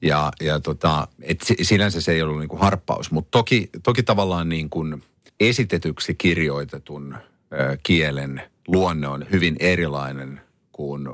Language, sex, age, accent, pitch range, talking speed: Finnish, male, 50-69, native, 75-95 Hz, 125 wpm